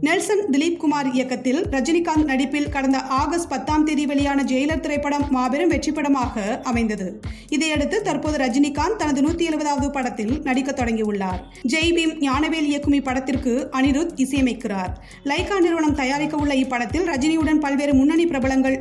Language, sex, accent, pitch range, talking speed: Tamil, female, native, 260-305 Hz, 130 wpm